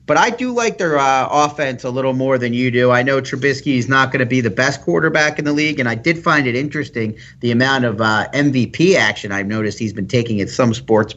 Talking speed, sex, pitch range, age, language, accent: 255 wpm, male, 120-145 Hz, 40-59, English, American